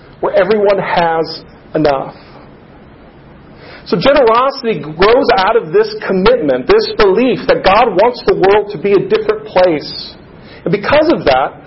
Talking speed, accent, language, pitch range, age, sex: 140 wpm, American, English, 165-235 Hz, 40-59, male